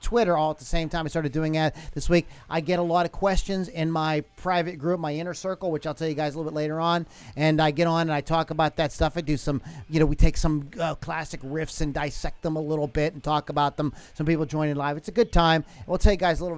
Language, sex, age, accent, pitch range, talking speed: English, male, 40-59, American, 145-175 Hz, 290 wpm